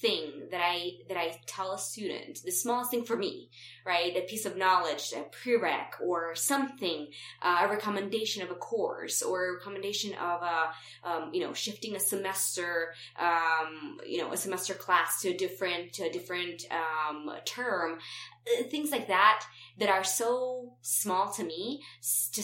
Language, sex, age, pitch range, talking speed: English, female, 20-39, 175-220 Hz, 170 wpm